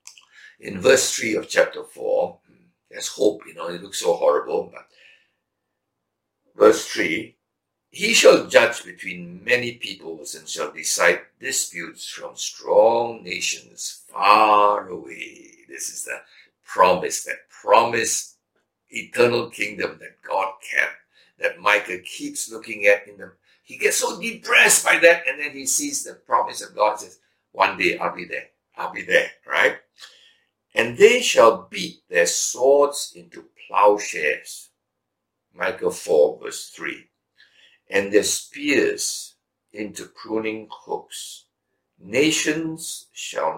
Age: 60-79